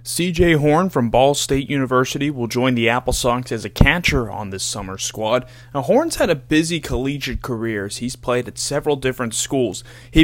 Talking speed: 195 wpm